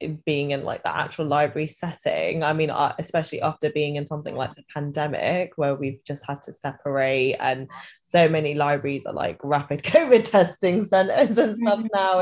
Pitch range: 145-165 Hz